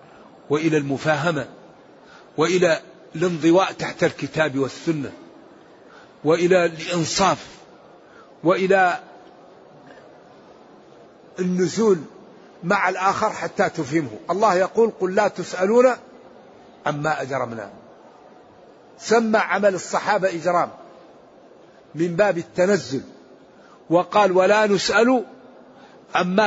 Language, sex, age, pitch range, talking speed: Arabic, male, 50-69, 165-200 Hz, 75 wpm